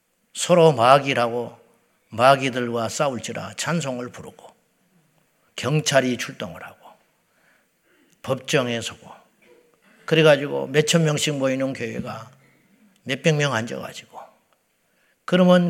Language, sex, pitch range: Korean, male, 145-205 Hz